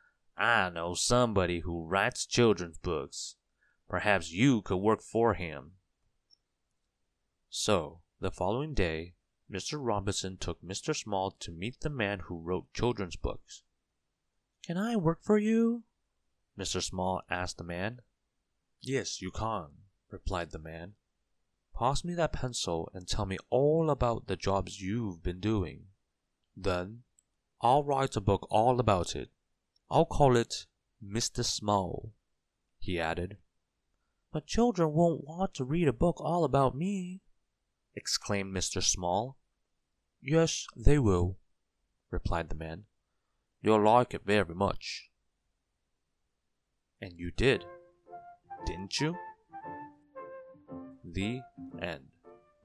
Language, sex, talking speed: English, male, 120 wpm